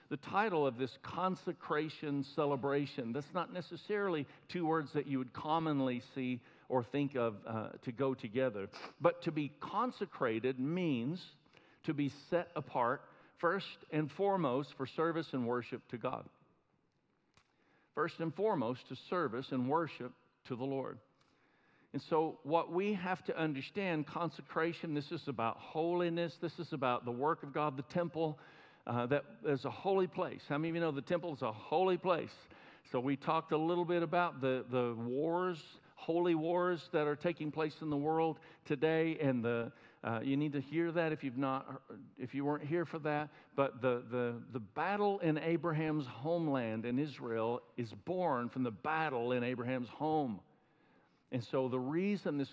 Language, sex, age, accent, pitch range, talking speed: English, male, 60-79, American, 130-170 Hz, 170 wpm